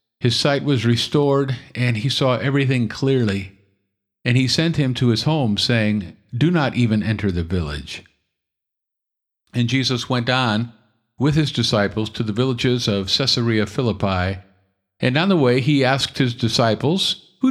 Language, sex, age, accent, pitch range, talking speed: English, male, 50-69, American, 95-130 Hz, 155 wpm